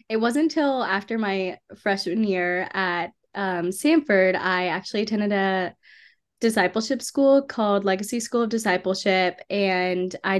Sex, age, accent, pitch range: female, 10-29, American, 185-220 Hz